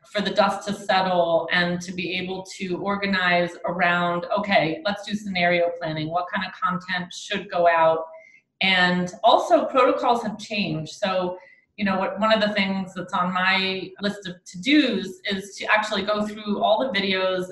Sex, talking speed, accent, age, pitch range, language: female, 170 wpm, American, 30-49, 175-210 Hz, English